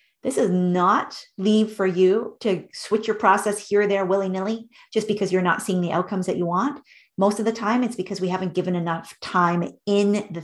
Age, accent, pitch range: 30-49, American, 180-215 Hz